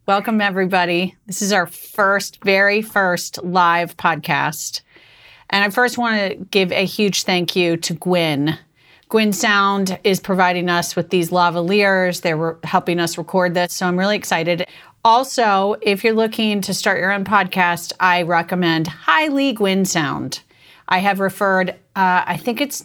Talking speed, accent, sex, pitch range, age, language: 160 wpm, American, female, 175-200 Hz, 40-59, English